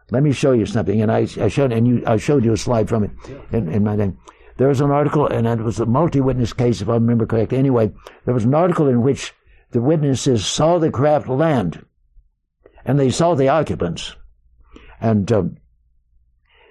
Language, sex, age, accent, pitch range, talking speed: English, male, 60-79, American, 110-145 Hz, 200 wpm